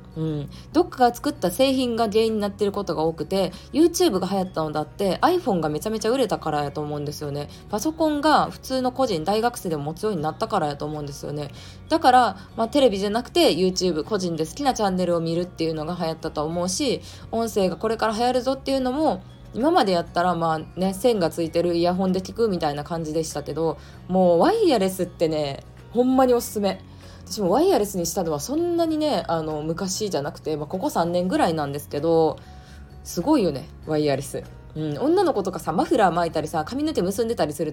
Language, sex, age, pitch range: Japanese, female, 20-39, 155-235 Hz